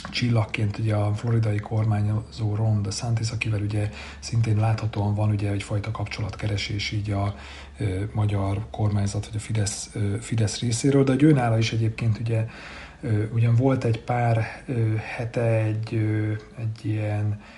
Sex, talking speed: male, 130 wpm